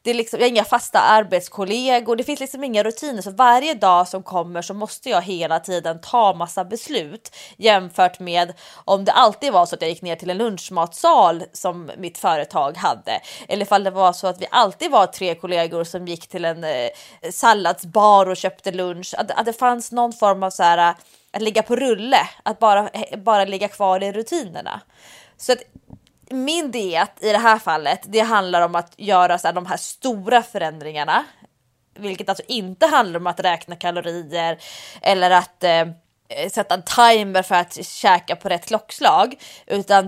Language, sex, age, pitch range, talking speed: English, female, 20-39, 175-230 Hz, 180 wpm